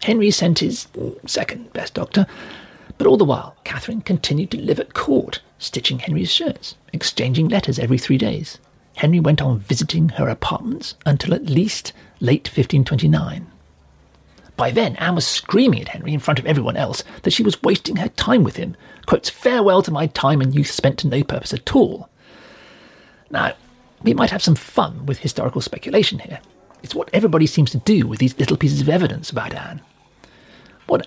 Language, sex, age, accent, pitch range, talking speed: English, male, 40-59, British, 135-185 Hz, 180 wpm